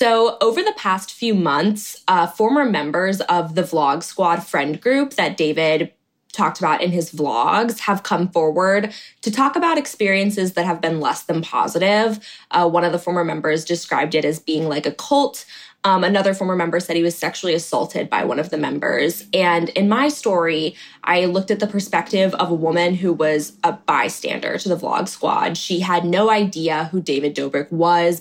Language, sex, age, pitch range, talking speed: English, female, 20-39, 160-200 Hz, 190 wpm